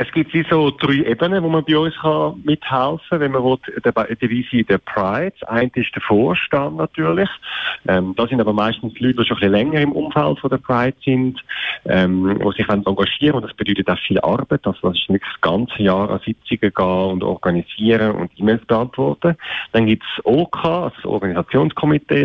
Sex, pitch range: male, 100-145 Hz